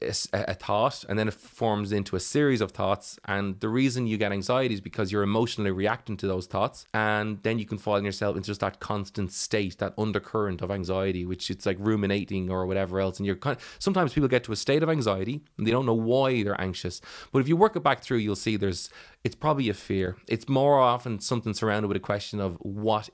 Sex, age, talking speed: male, 20-39, 235 wpm